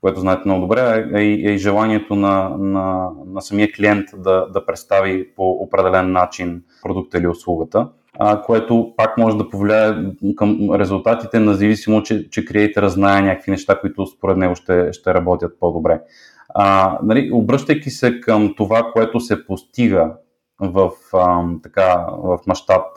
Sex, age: male, 30-49